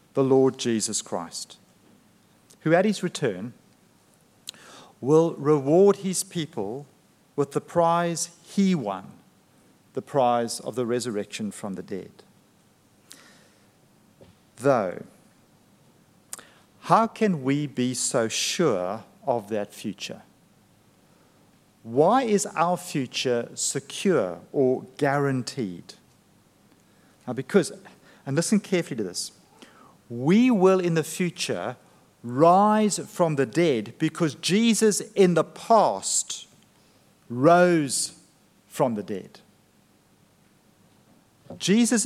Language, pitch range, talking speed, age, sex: English, 135-190 Hz, 95 wpm, 50-69, male